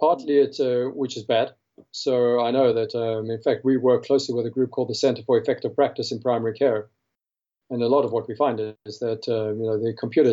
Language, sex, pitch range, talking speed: English, male, 110-130 Hz, 245 wpm